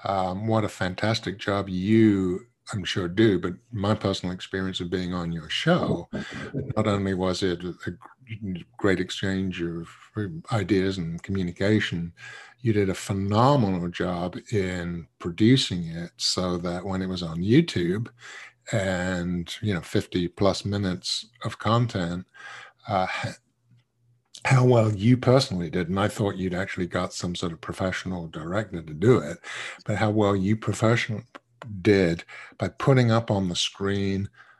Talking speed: 145 wpm